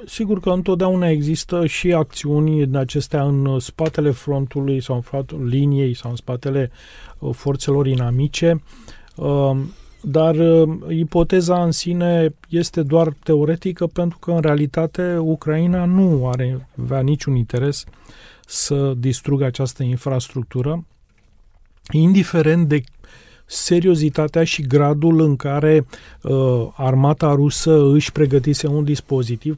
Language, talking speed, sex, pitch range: Romanian, 110 wpm, male, 130-155 Hz